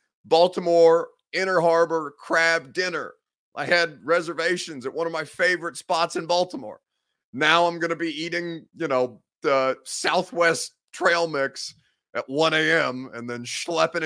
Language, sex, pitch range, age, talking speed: English, male, 130-170 Hz, 30-49, 140 wpm